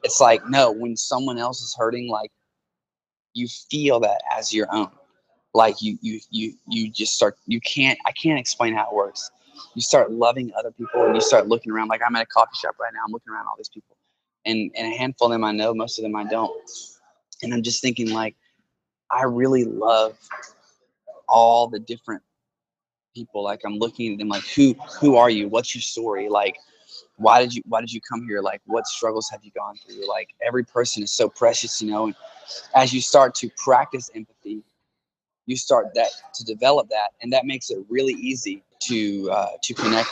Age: 20-39